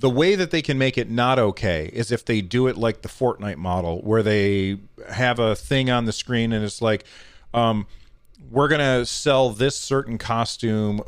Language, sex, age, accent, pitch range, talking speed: English, male, 40-59, American, 105-130 Hz, 200 wpm